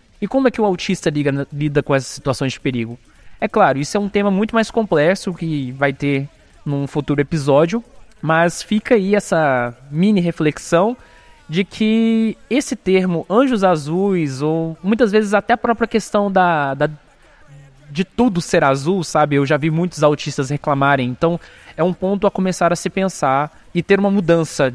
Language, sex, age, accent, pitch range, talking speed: Portuguese, male, 20-39, Brazilian, 140-190 Hz, 175 wpm